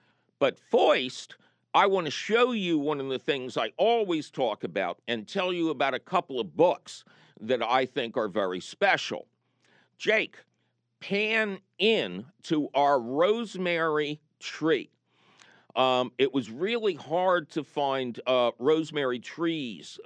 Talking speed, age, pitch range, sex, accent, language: 140 wpm, 50-69, 125-175 Hz, male, American, English